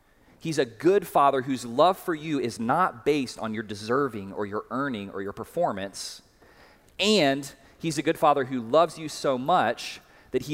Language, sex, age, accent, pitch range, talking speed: English, male, 30-49, American, 110-150 Hz, 180 wpm